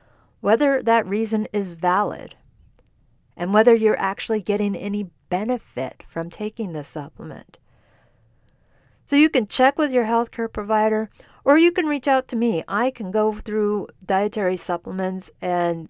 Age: 50-69